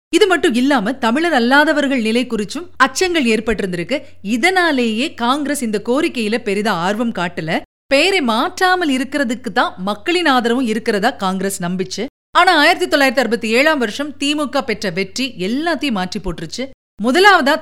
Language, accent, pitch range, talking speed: Tamil, native, 210-285 Hz, 125 wpm